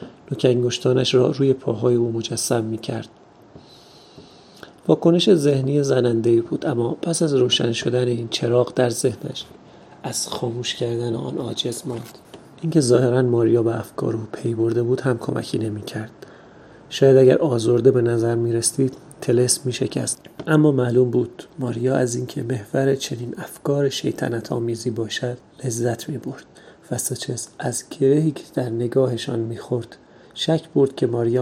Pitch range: 120-135 Hz